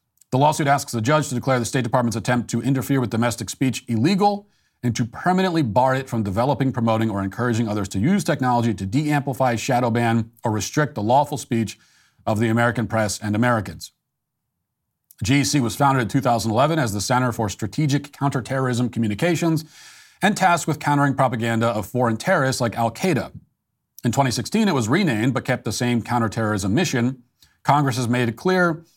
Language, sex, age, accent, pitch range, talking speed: English, male, 40-59, American, 110-135 Hz, 175 wpm